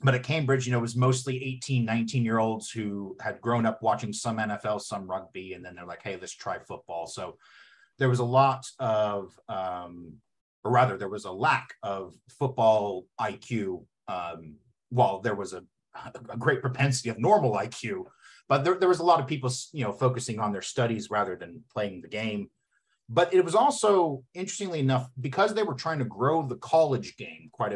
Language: English